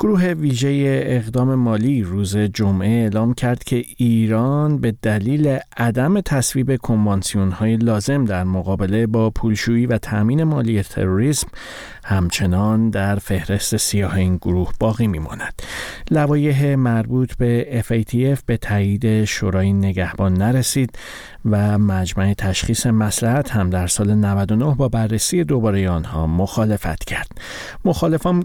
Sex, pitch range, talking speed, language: male, 100-135 Hz, 120 wpm, Persian